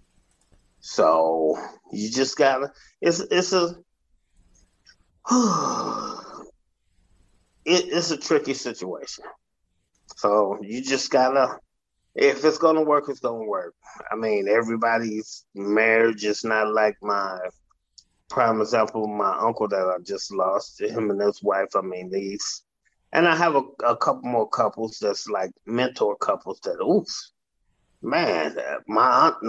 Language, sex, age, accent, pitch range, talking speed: English, male, 30-49, American, 110-150 Hz, 130 wpm